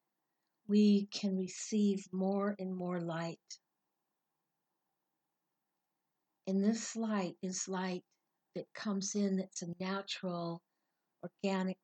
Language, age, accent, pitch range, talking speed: English, 60-79, American, 175-200 Hz, 95 wpm